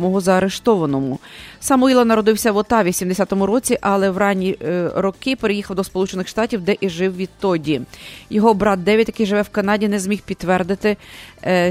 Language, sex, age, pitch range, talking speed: English, female, 30-49, 180-210 Hz, 170 wpm